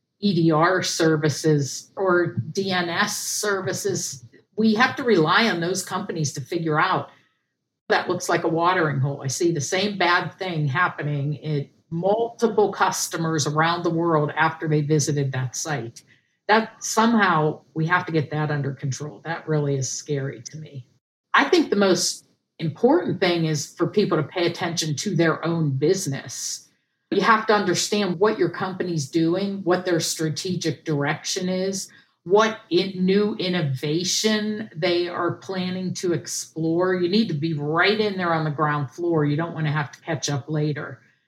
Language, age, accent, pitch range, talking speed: English, 50-69, American, 155-190 Hz, 160 wpm